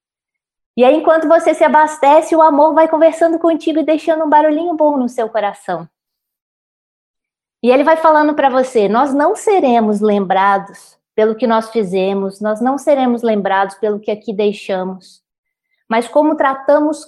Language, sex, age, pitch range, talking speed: Portuguese, female, 20-39, 220-300 Hz, 155 wpm